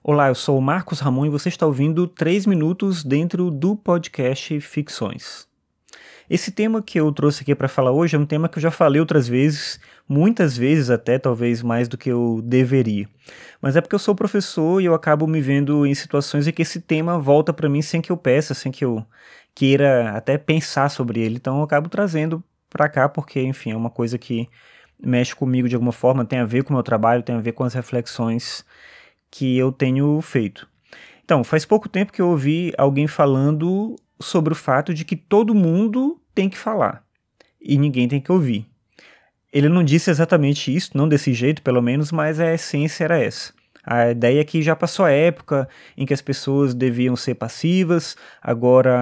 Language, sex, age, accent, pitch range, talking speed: Portuguese, male, 20-39, Brazilian, 125-165 Hz, 200 wpm